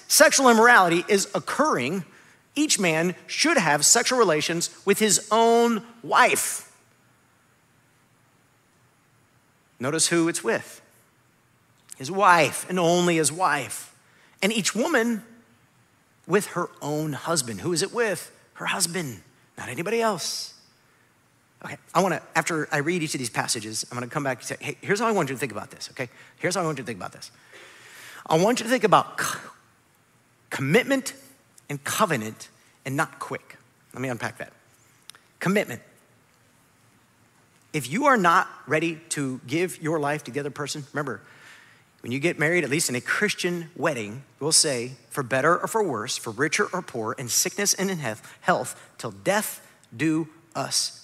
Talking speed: 160 wpm